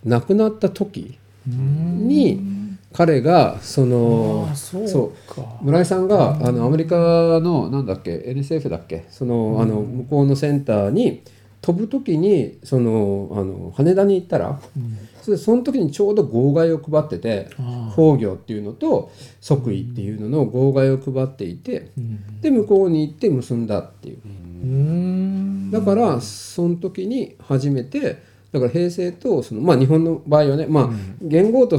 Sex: male